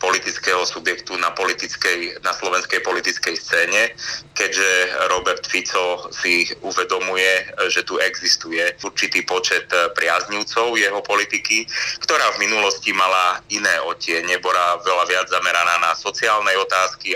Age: 30-49